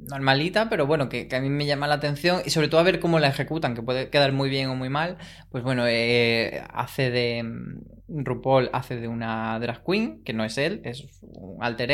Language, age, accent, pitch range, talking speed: Spanish, 20-39, Spanish, 120-155 Hz, 225 wpm